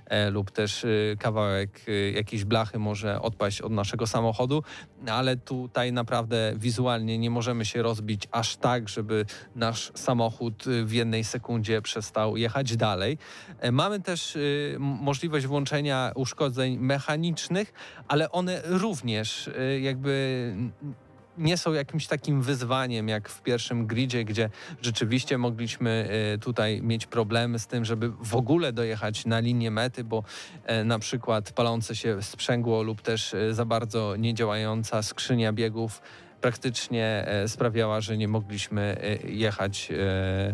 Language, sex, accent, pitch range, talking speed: Polish, male, native, 110-130 Hz, 120 wpm